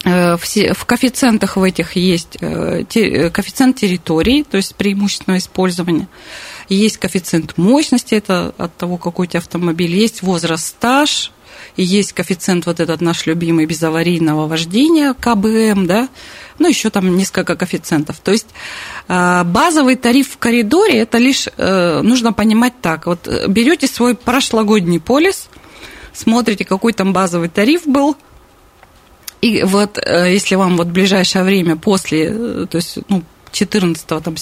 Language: Russian